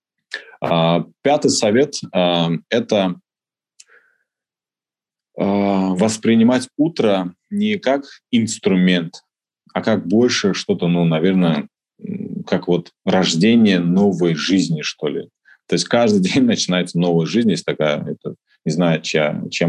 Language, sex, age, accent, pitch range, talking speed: Russian, male, 20-39, native, 85-115 Hz, 105 wpm